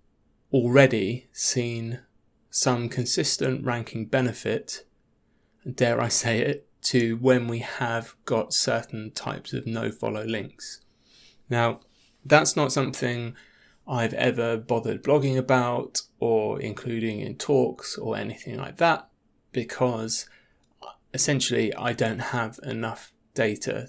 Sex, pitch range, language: male, 115-130 Hz, English